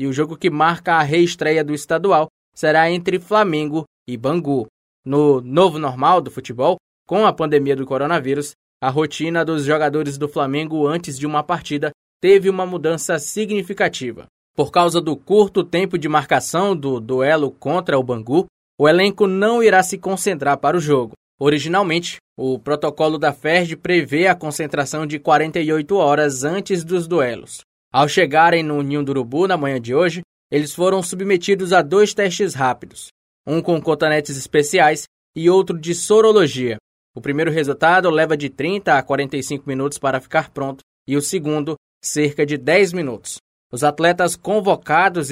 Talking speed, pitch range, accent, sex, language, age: 160 wpm, 145-180 Hz, Brazilian, male, Portuguese, 20-39